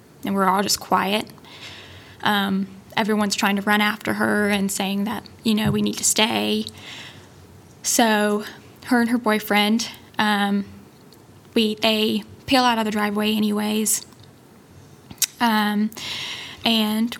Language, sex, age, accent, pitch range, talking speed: English, female, 10-29, American, 200-225 Hz, 130 wpm